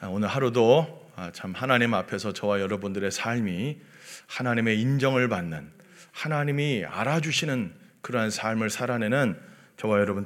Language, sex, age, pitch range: Korean, male, 40-59, 105-140 Hz